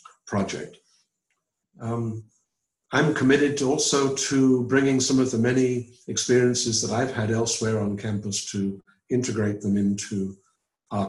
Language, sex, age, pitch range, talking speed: English, male, 50-69, 105-120 Hz, 125 wpm